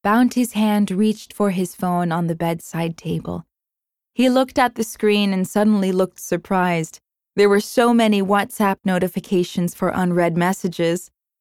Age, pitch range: 20-39, 175-225 Hz